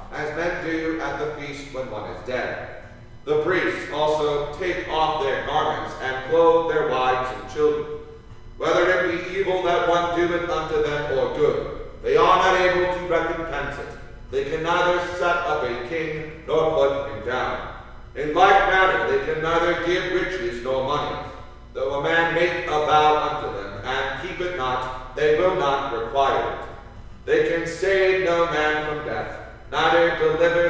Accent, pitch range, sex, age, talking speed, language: American, 150-190 Hz, male, 40-59, 170 wpm, English